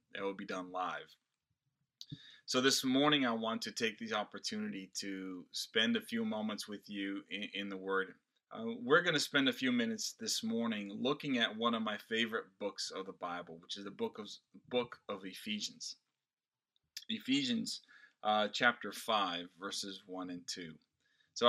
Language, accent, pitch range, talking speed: English, American, 100-140 Hz, 175 wpm